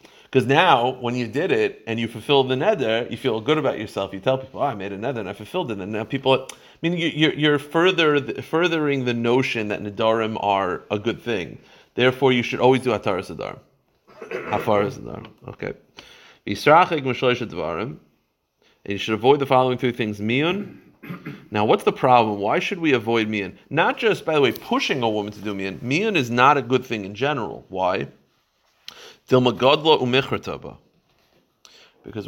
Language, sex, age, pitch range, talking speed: English, male, 40-59, 100-130 Hz, 180 wpm